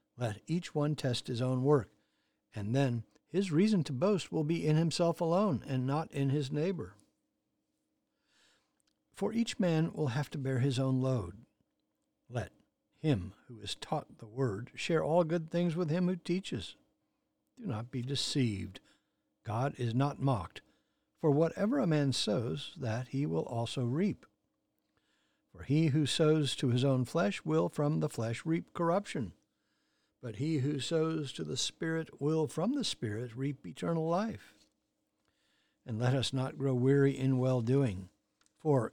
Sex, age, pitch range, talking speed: male, 60-79, 125-160 Hz, 160 wpm